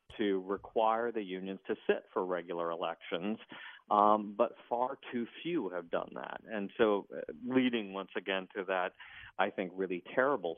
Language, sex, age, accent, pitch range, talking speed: English, male, 50-69, American, 95-120 Hz, 160 wpm